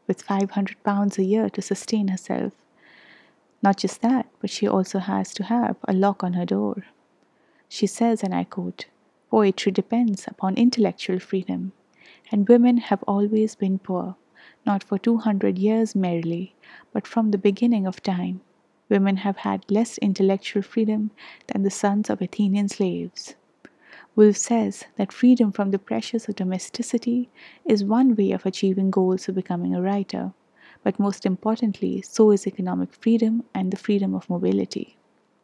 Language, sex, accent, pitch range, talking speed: English, female, Indian, 190-220 Hz, 155 wpm